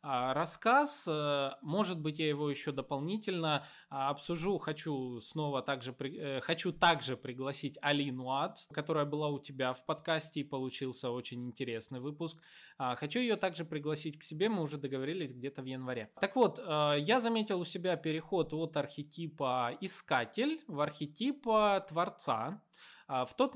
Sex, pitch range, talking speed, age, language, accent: male, 140-175 Hz, 140 wpm, 20-39, Russian, native